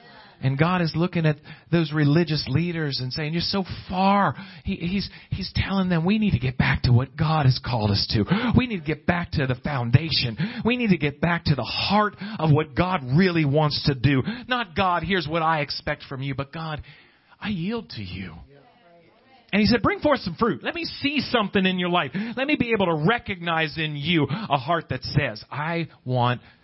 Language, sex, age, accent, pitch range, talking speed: English, male, 40-59, American, 125-195 Hz, 210 wpm